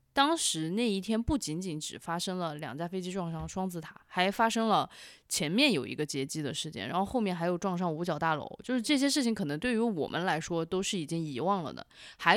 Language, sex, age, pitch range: Chinese, female, 20-39, 165-220 Hz